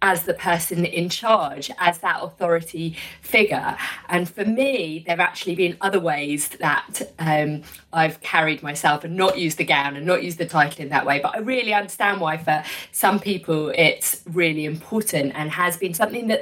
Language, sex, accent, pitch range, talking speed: English, female, British, 150-180 Hz, 190 wpm